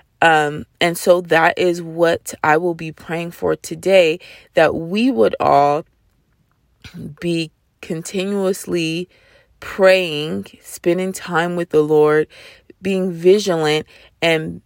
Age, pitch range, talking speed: 20-39, 160-190 Hz, 110 wpm